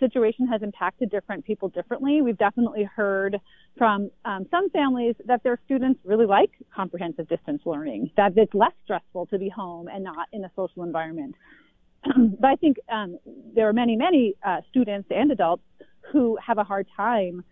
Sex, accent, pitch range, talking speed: female, American, 195-250 Hz, 175 wpm